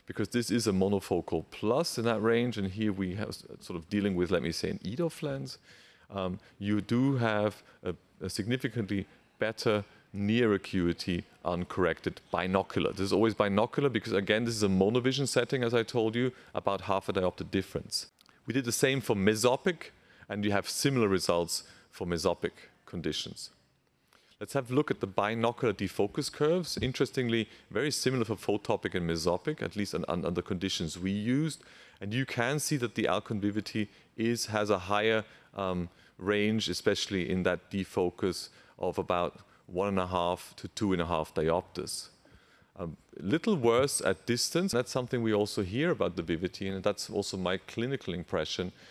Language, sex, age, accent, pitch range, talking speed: English, male, 40-59, German, 95-120 Hz, 170 wpm